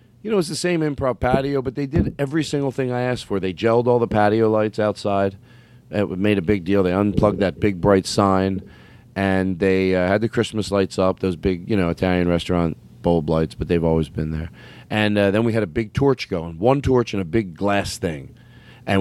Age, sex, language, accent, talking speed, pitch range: 40-59, male, English, American, 225 wpm, 95-115 Hz